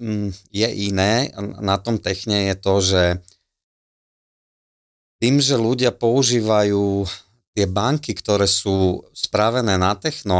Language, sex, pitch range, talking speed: Slovak, male, 95-115 Hz, 110 wpm